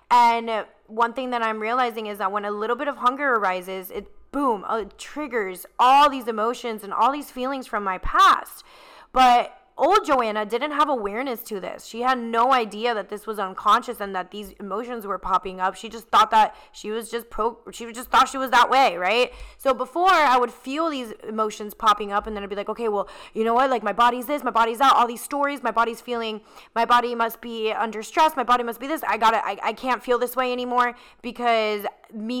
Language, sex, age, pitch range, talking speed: English, female, 20-39, 215-265 Hz, 225 wpm